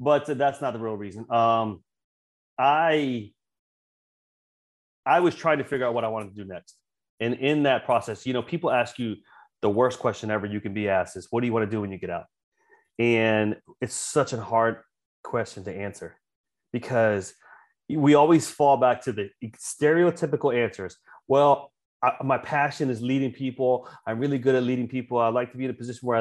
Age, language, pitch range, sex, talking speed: 30-49, English, 115-150 Hz, male, 195 wpm